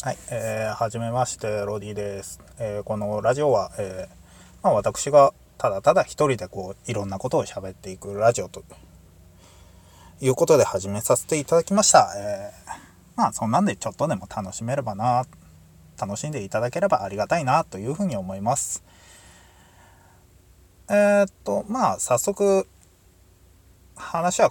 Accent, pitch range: native, 90-145 Hz